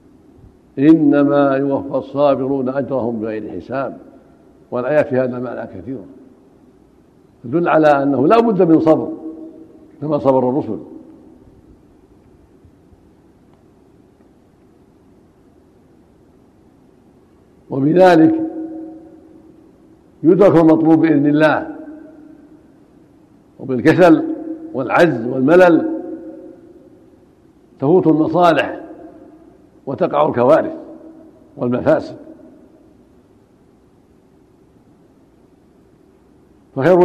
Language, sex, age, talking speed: Arabic, male, 60-79, 55 wpm